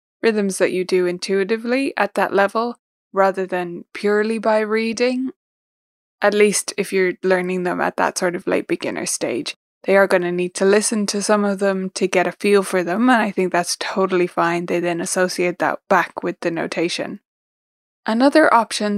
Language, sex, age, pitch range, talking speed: English, female, 20-39, 185-220 Hz, 185 wpm